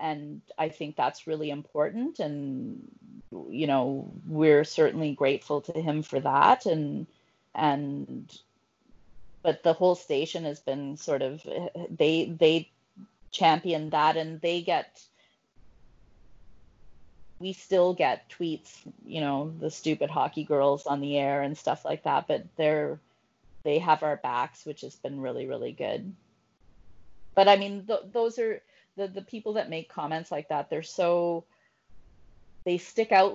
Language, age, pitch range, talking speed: English, 30-49, 145-175 Hz, 145 wpm